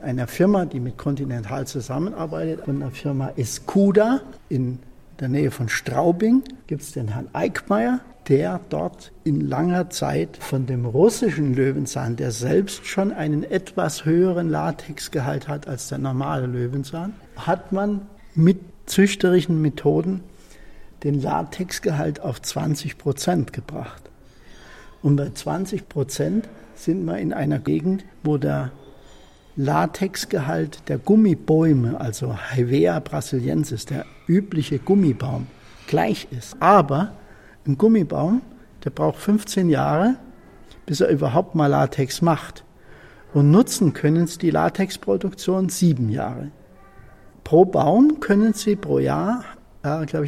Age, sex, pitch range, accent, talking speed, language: 60-79, male, 135-190 Hz, German, 125 wpm, German